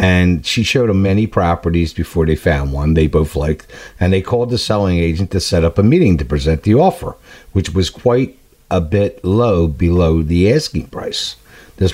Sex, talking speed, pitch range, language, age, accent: male, 195 wpm, 85-105 Hz, English, 50-69, American